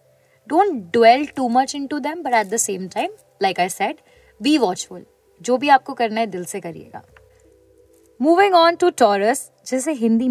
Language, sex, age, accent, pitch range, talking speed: Hindi, female, 20-39, native, 185-270 Hz, 75 wpm